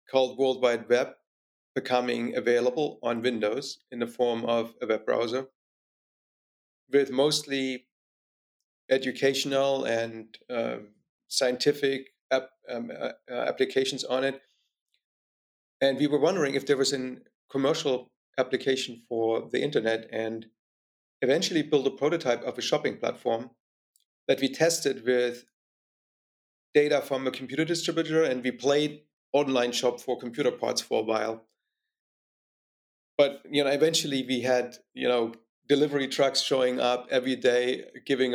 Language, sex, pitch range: English, male, 120-140 Hz